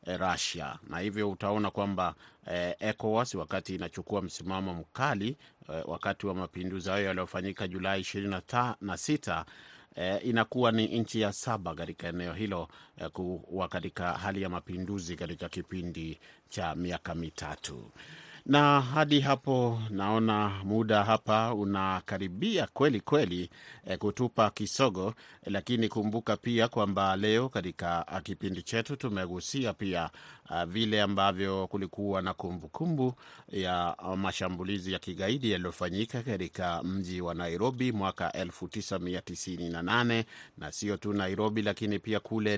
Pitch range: 90-110 Hz